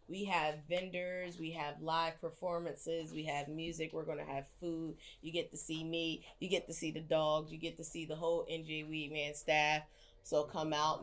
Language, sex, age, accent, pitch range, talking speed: English, female, 20-39, American, 155-180 Hz, 205 wpm